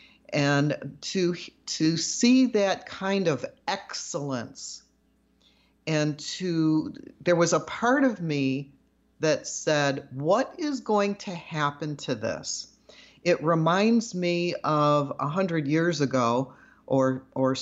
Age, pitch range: 50-69, 140-190 Hz